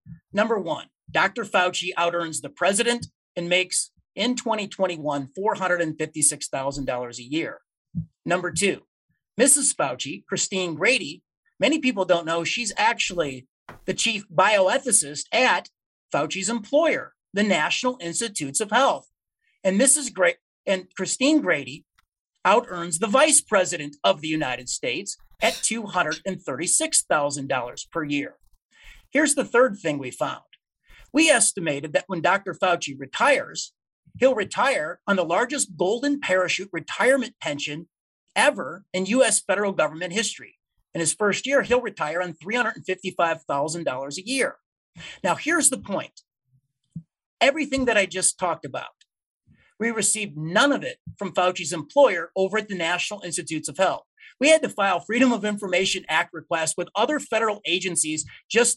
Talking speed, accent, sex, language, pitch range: 135 wpm, American, male, English, 165-240 Hz